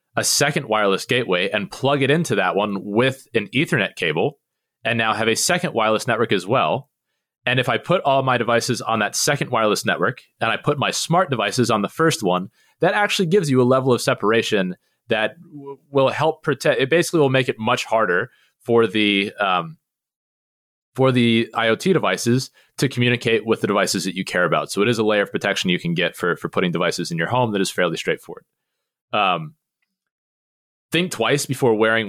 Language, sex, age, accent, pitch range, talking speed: English, male, 30-49, American, 105-140 Hz, 200 wpm